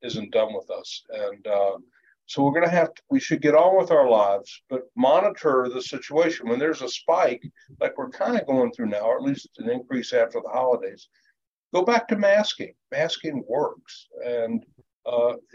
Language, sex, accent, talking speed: English, male, American, 195 wpm